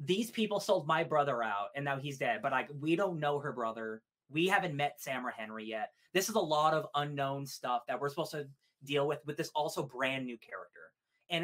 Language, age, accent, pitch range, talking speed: English, 20-39, American, 130-175 Hz, 220 wpm